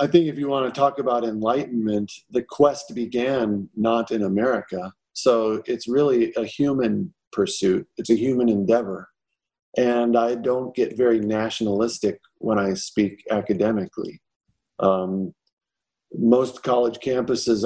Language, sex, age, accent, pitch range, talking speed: English, male, 40-59, American, 105-120 Hz, 135 wpm